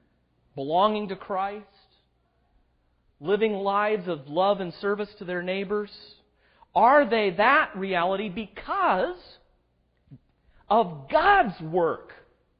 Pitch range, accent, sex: 150-215 Hz, American, male